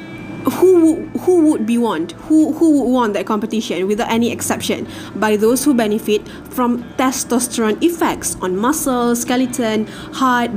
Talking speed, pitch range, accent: 140 wpm, 210-255 Hz, Malaysian